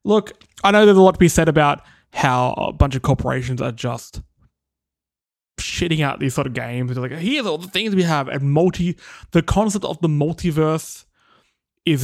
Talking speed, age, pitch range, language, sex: 190 wpm, 20-39, 135-190 Hz, English, male